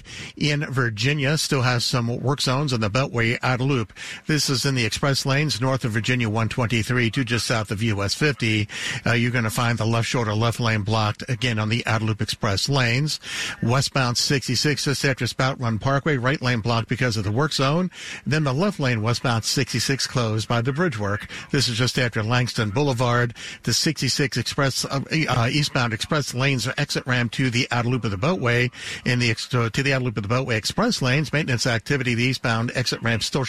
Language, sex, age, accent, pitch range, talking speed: English, male, 60-79, American, 115-140 Hz, 200 wpm